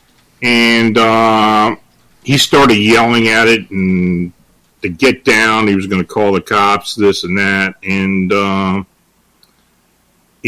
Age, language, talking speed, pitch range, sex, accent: 40-59, English, 130 wpm, 95-110 Hz, male, American